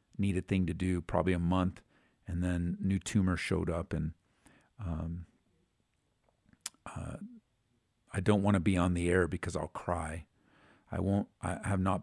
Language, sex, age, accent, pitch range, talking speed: English, male, 50-69, American, 90-105 Hz, 165 wpm